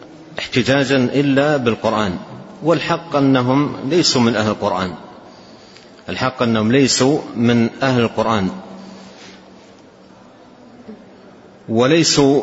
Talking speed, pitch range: 75 wpm, 115-135 Hz